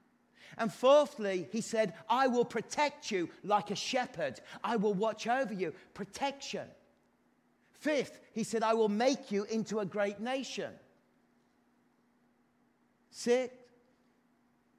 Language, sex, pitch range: English, male, 150-225 Hz